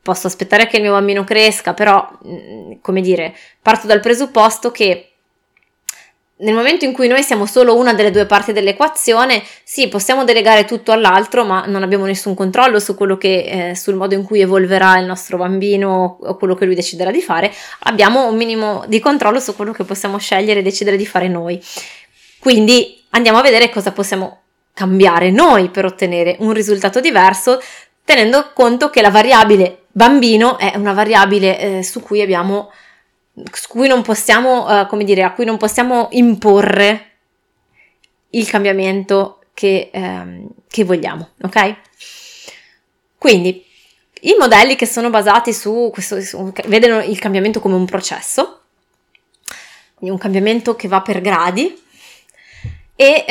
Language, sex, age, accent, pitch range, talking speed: Italian, female, 20-39, native, 190-235 Hz, 155 wpm